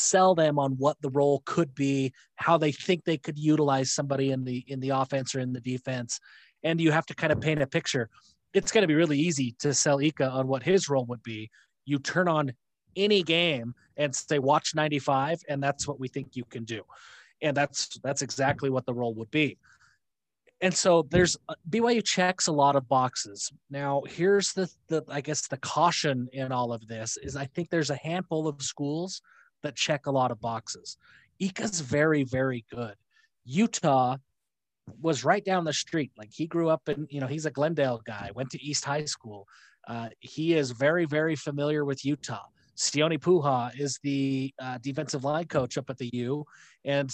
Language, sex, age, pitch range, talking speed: English, male, 30-49, 130-160 Hz, 200 wpm